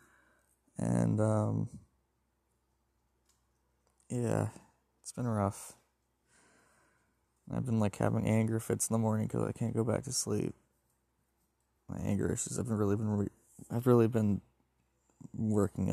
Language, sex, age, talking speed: English, male, 20-39, 130 wpm